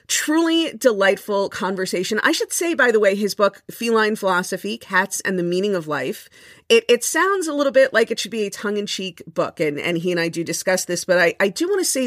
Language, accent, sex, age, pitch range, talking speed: English, American, female, 40-59, 175-235 Hz, 235 wpm